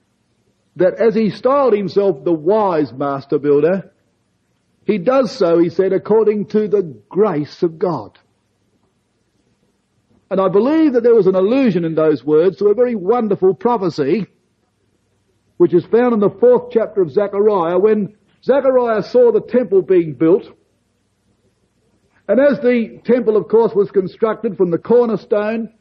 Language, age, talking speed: English, 50-69, 145 wpm